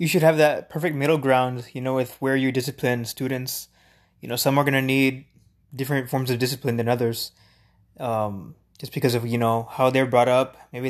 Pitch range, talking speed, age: 115-145 Hz, 210 wpm, 20-39